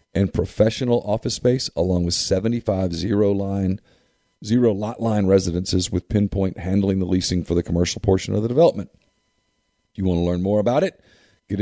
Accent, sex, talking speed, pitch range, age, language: American, male, 170 wpm, 95-115 Hz, 40-59, English